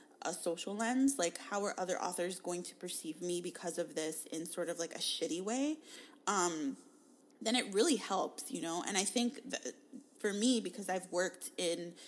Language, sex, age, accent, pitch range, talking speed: English, female, 20-39, American, 180-265 Hz, 195 wpm